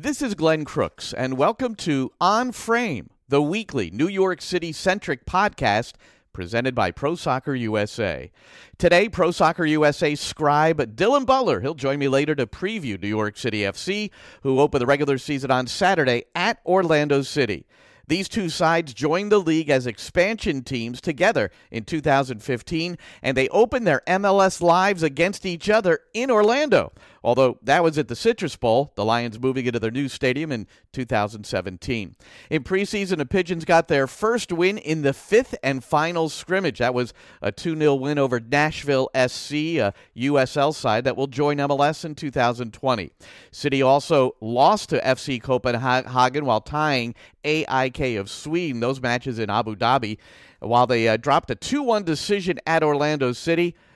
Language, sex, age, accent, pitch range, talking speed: English, male, 50-69, American, 125-170 Hz, 160 wpm